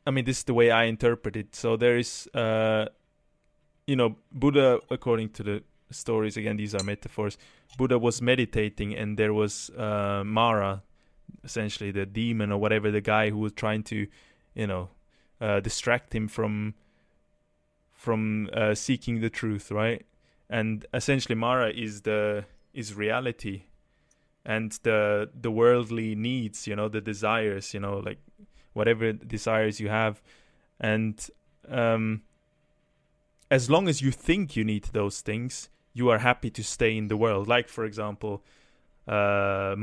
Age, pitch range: 20-39, 105-125 Hz